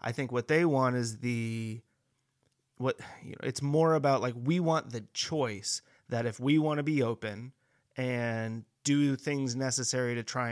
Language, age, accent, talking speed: English, 30-49, American, 175 wpm